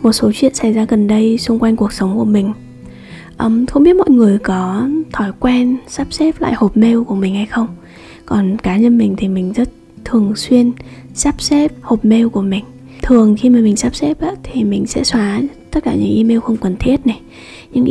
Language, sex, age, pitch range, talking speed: Vietnamese, female, 20-39, 200-245 Hz, 210 wpm